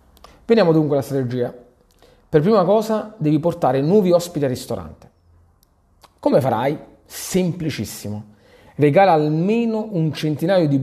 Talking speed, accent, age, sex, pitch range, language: 115 wpm, native, 40-59, male, 130-180 Hz, Italian